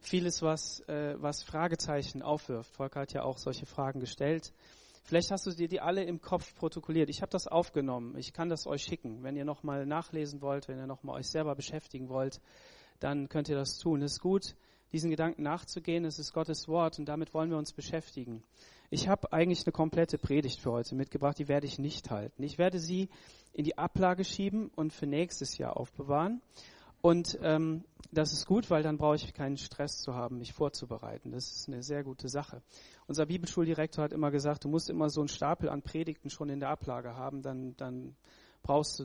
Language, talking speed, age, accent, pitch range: German, 205 wpm, 40-59, German, 135-165 Hz